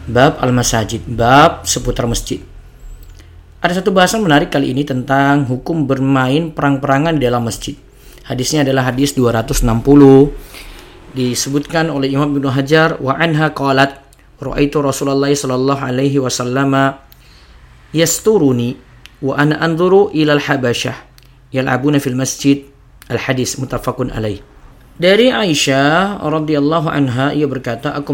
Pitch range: 125-145 Hz